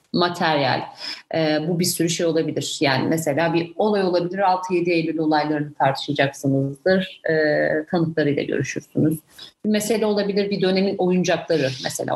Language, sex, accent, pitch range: Turkish, female, native, 155-195 Hz